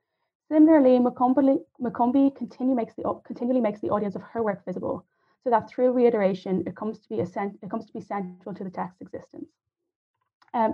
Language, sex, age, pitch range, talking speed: English, female, 20-39, 185-230 Hz, 160 wpm